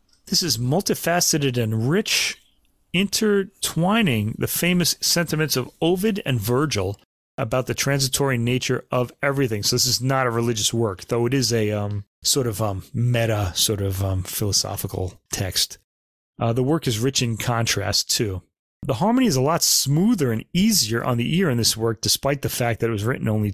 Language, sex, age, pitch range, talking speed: English, male, 30-49, 110-150 Hz, 180 wpm